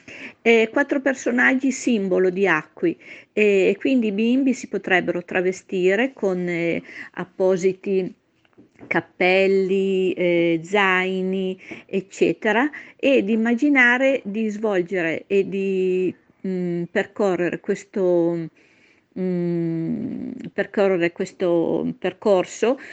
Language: Italian